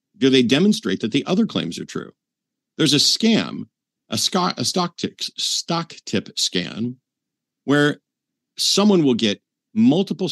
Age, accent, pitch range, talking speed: 50-69, American, 100-150 Hz, 135 wpm